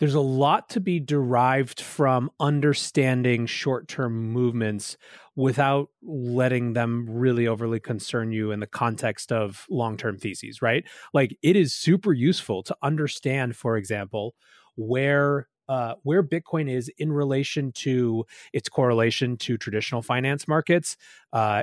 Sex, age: male, 30-49